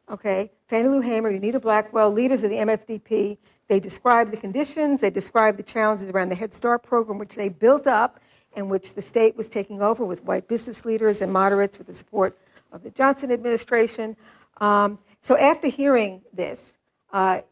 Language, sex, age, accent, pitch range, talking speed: English, female, 60-79, American, 205-250 Hz, 180 wpm